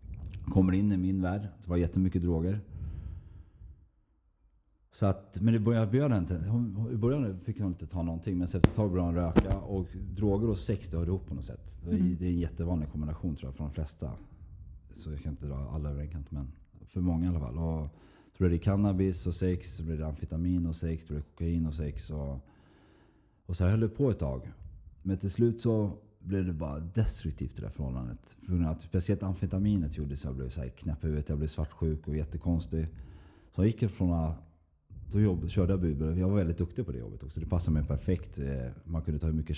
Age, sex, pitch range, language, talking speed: 30-49, male, 75-95 Hz, Swedish, 215 wpm